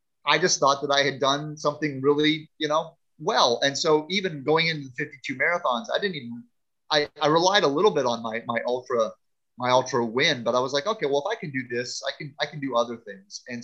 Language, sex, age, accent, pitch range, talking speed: English, male, 30-49, American, 120-155 Hz, 240 wpm